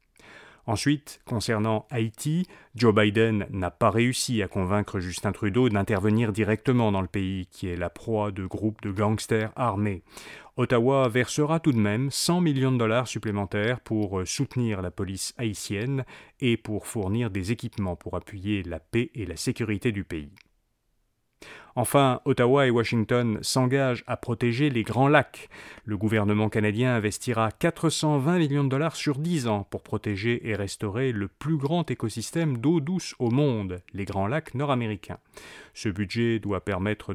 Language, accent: French, French